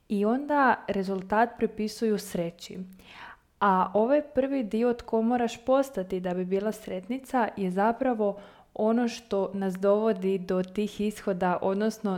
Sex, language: female, Croatian